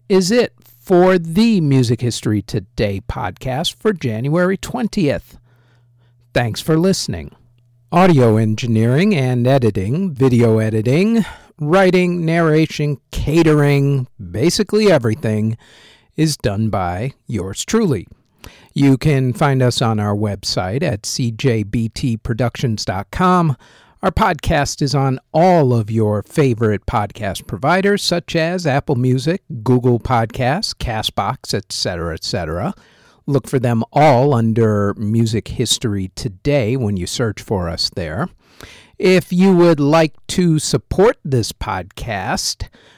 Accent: American